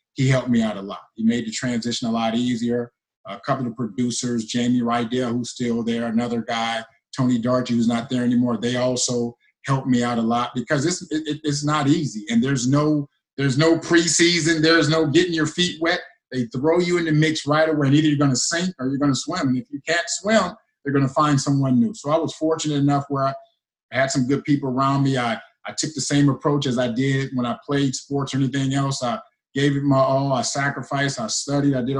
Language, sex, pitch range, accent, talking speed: English, male, 125-160 Hz, American, 235 wpm